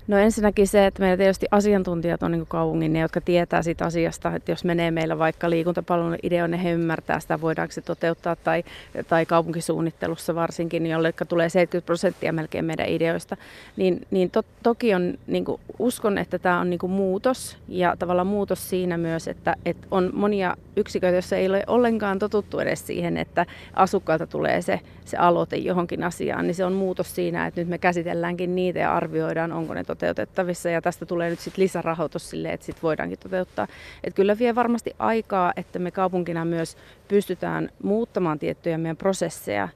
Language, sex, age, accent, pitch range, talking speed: Finnish, female, 30-49, native, 165-190 Hz, 175 wpm